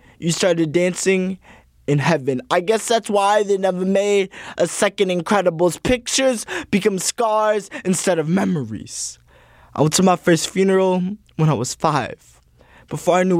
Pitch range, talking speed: 165-240 Hz, 150 wpm